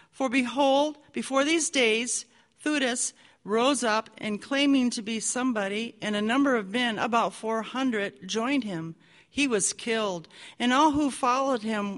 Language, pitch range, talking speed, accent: English, 210-260 Hz, 155 wpm, American